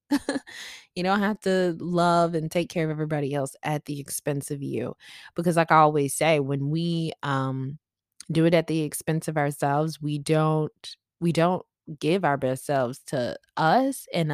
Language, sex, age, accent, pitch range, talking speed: English, female, 20-39, American, 145-175 Hz, 175 wpm